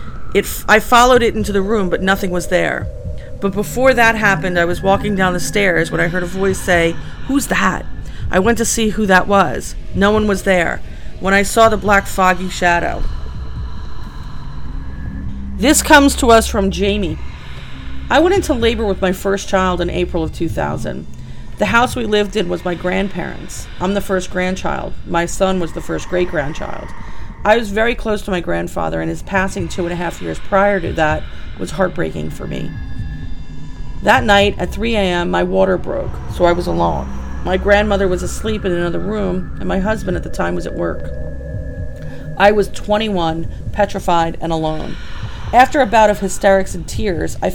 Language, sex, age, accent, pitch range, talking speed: English, female, 40-59, American, 160-205 Hz, 185 wpm